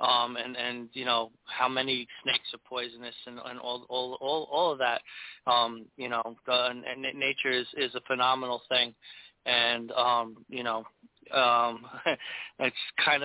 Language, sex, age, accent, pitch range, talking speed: English, male, 20-39, American, 120-130 Hz, 170 wpm